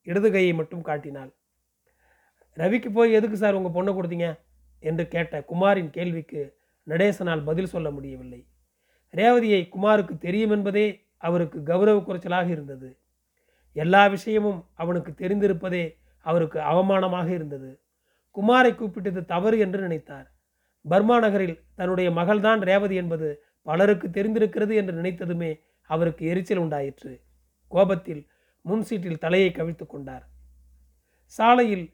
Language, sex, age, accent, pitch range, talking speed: Tamil, male, 30-49, native, 155-200 Hz, 105 wpm